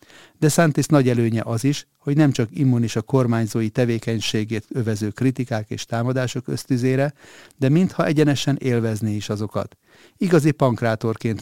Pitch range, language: 110-140 Hz, Hungarian